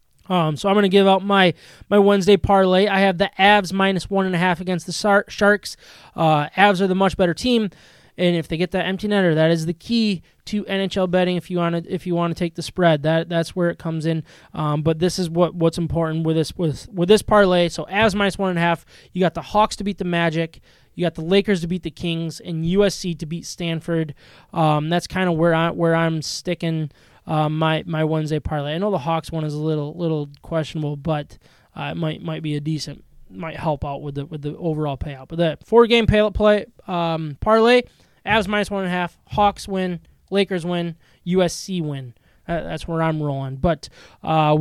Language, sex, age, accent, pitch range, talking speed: English, male, 20-39, American, 160-195 Hz, 230 wpm